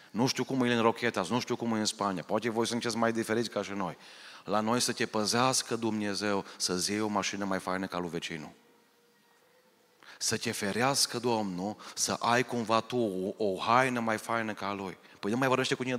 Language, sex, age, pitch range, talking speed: Romanian, male, 30-49, 110-140 Hz, 210 wpm